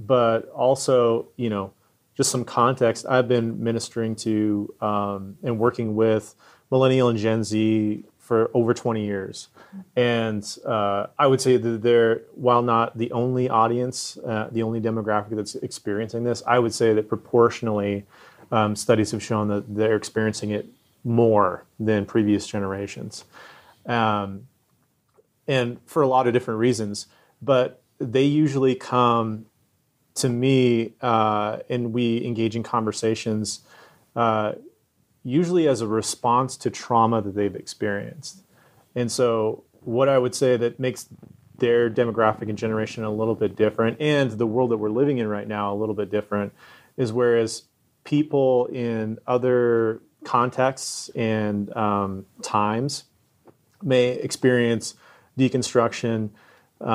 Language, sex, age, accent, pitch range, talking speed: English, male, 30-49, American, 110-125 Hz, 135 wpm